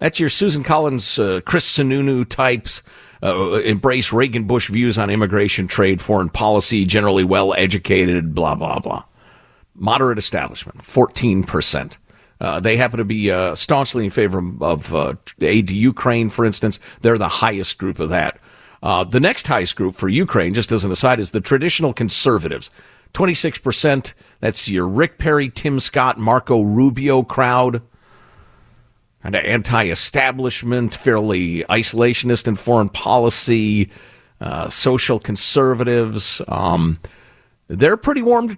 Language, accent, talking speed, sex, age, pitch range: English, American, 135 wpm, male, 50-69, 105-145 Hz